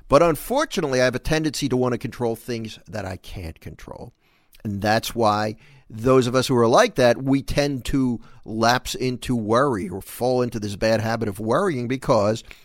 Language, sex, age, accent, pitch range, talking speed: English, male, 50-69, American, 115-165 Hz, 190 wpm